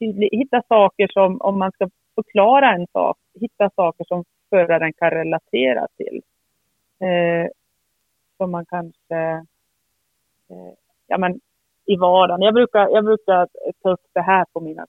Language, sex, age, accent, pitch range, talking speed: Swedish, female, 30-49, native, 165-205 Hz, 150 wpm